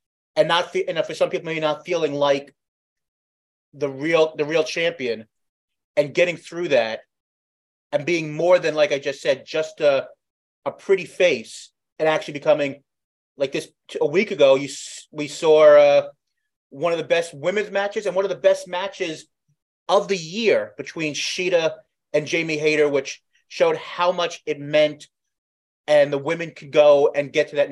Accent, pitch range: American, 140-170 Hz